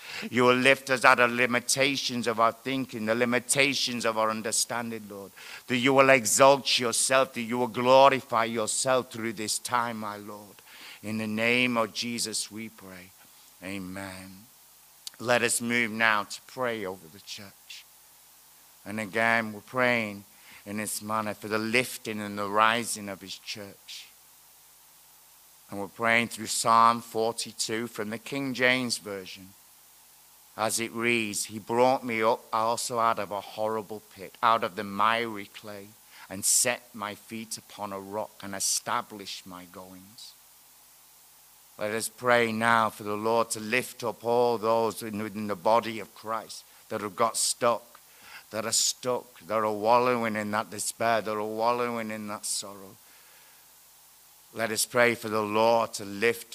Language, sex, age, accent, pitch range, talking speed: English, male, 60-79, British, 105-120 Hz, 155 wpm